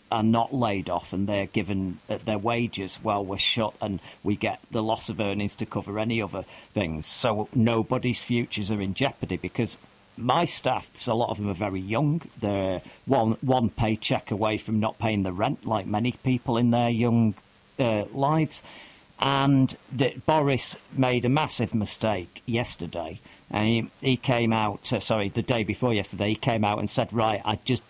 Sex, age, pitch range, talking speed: male, 40-59, 100-120 Hz, 185 wpm